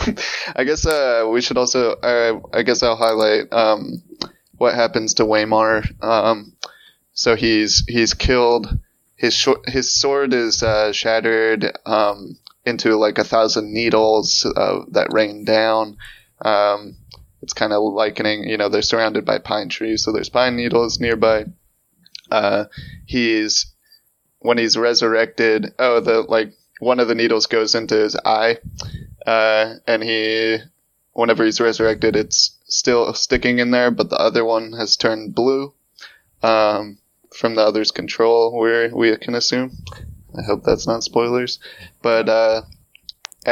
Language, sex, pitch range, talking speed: English, male, 110-120 Hz, 145 wpm